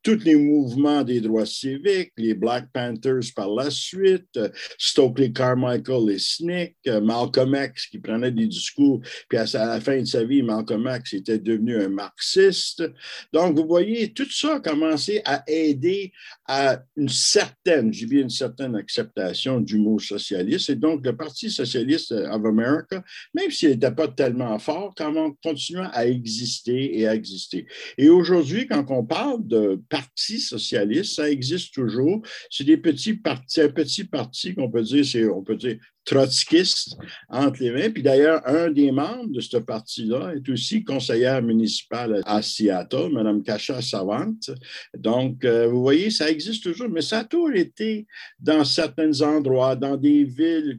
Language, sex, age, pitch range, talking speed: French, male, 60-79, 125-170 Hz, 165 wpm